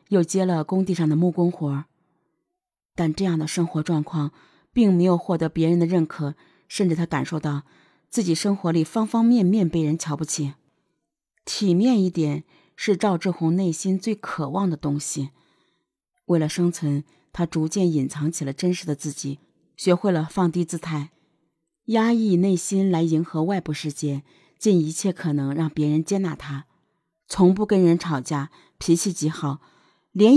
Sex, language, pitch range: female, Chinese, 155-200 Hz